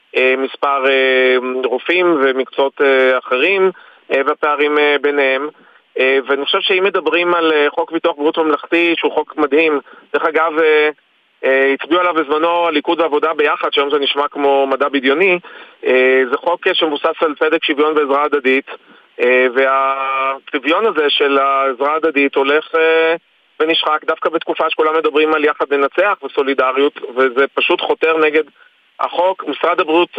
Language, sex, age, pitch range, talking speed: Hebrew, male, 30-49, 140-170 Hz, 125 wpm